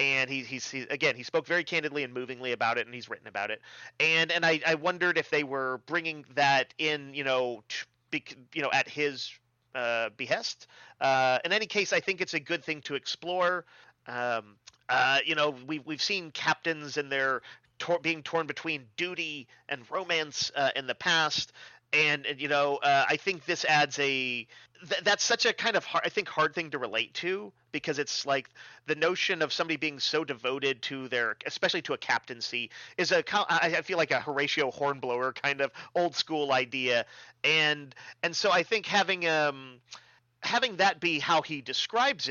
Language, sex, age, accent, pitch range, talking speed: English, male, 40-59, American, 130-170 Hz, 195 wpm